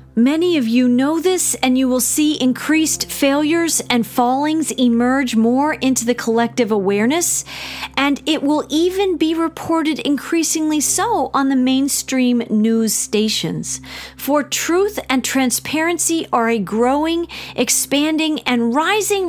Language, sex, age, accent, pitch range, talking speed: English, female, 40-59, American, 230-310 Hz, 130 wpm